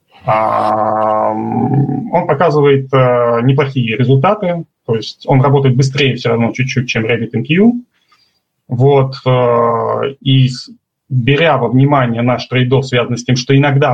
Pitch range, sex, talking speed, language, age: 115-140 Hz, male, 125 wpm, Russian, 20-39